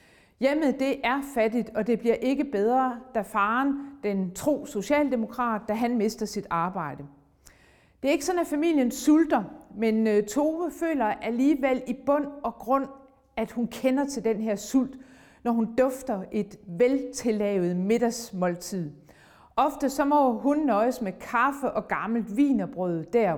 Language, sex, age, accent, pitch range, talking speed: Danish, female, 40-59, native, 205-265 Hz, 150 wpm